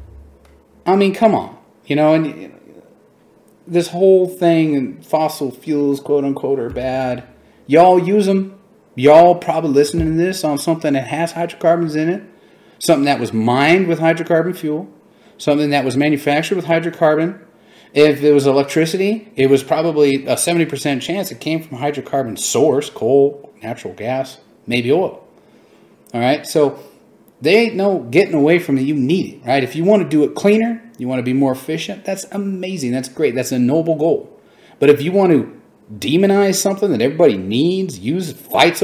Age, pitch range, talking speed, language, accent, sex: 40-59, 140-195 Hz, 175 wpm, English, American, male